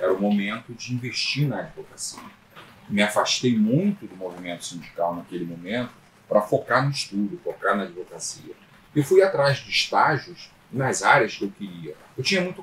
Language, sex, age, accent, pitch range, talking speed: Portuguese, male, 40-59, Brazilian, 110-175 Hz, 165 wpm